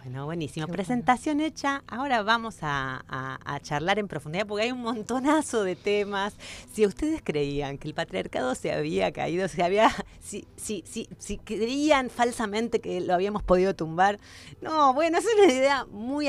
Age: 30-49